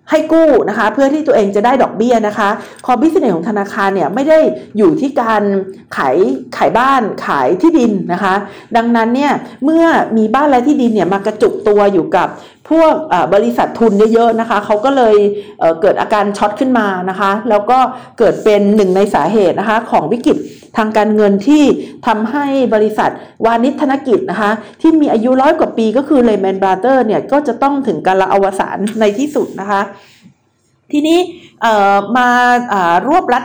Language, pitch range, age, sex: Thai, 205-275 Hz, 50-69, female